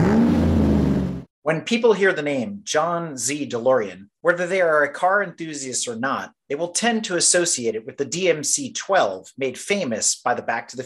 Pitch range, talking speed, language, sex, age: 120-190 Hz, 175 wpm, English, male, 30-49